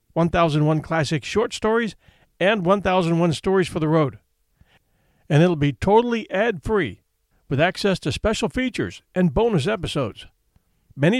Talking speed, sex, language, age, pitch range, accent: 130 wpm, male, English, 50-69, 150-200 Hz, American